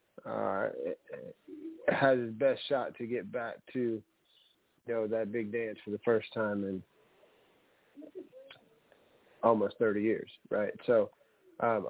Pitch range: 110-130 Hz